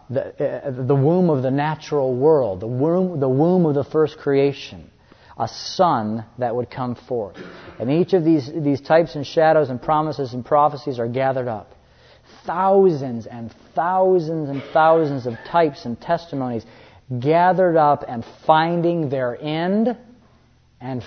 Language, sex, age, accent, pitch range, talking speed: English, male, 30-49, American, 120-155 Hz, 150 wpm